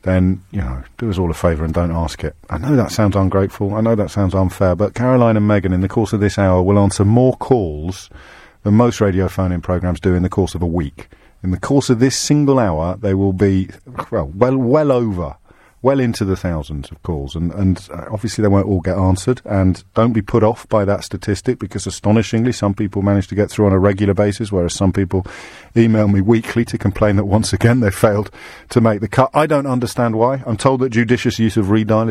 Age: 50-69